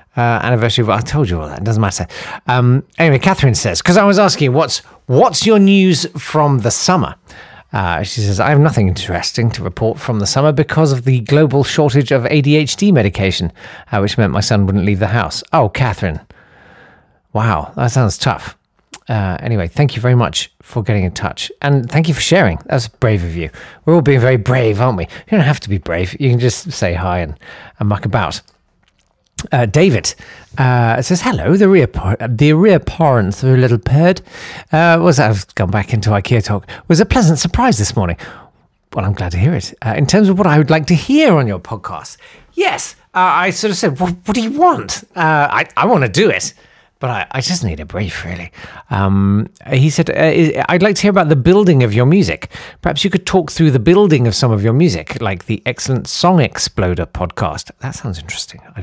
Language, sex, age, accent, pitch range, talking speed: English, male, 40-59, British, 100-155 Hz, 215 wpm